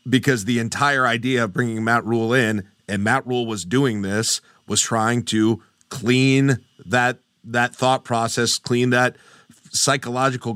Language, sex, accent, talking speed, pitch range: English, male, American, 150 wpm, 120-150 Hz